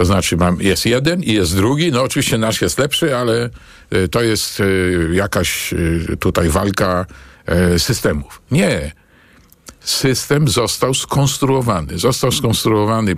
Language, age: Polish, 50-69